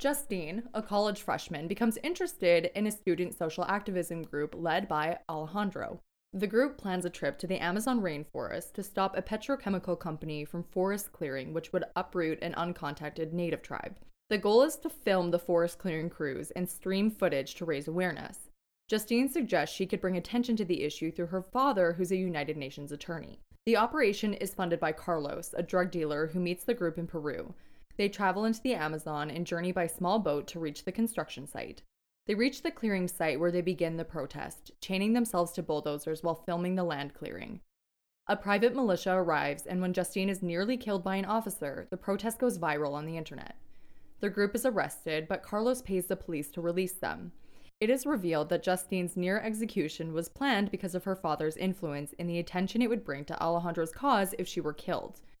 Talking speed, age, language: 195 wpm, 20-39, English